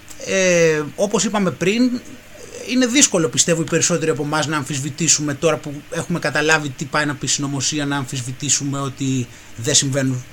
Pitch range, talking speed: 125-185 Hz, 155 wpm